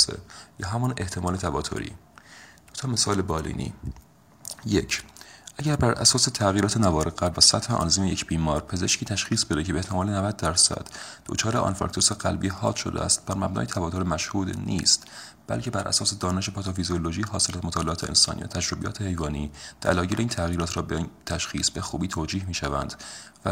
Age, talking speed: 30-49, 155 wpm